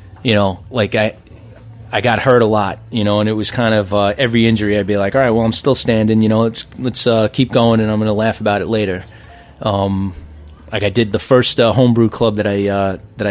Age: 20-39